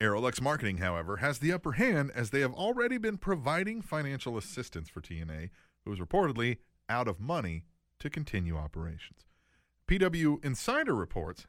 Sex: male